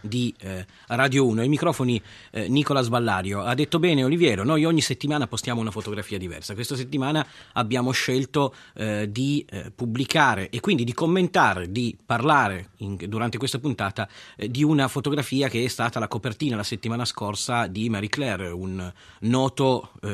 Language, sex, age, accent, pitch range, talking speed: Italian, male, 30-49, native, 110-145 Hz, 145 wpm